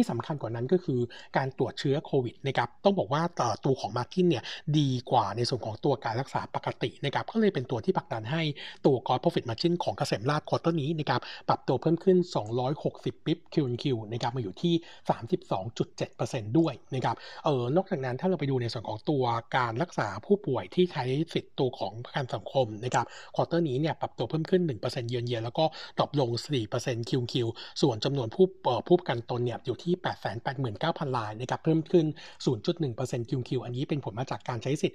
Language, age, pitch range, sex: Thai, 60-79, 125-165 Hz, male